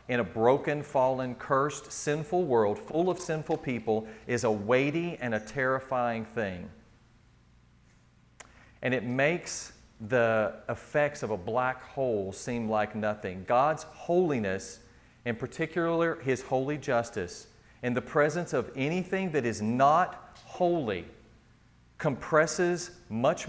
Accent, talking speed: American, 125 wpm